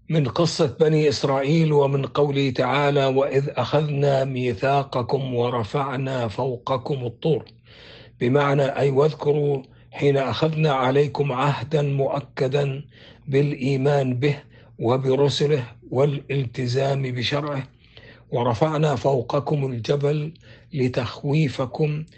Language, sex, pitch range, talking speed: Arabic, male, 125-145 Hz, 80 wpm